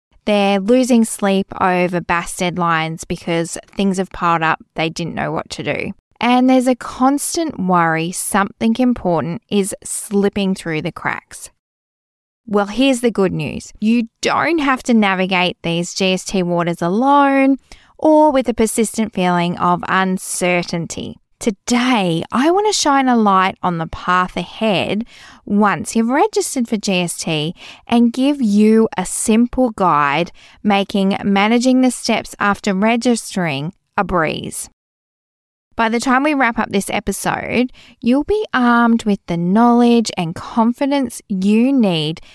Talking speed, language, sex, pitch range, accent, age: 140 wpm, English, female, 185-250 Hz, Australian, 20-39